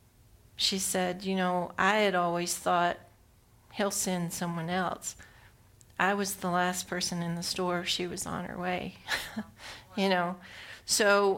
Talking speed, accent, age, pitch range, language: 150 wpm, American, 40-59, 175-200 Hz, English